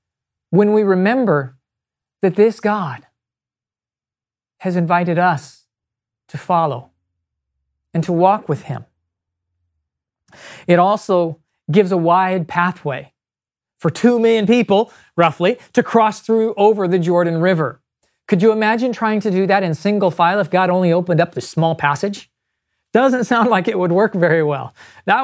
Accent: American